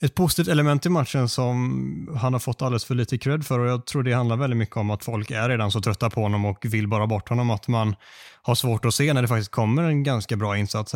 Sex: male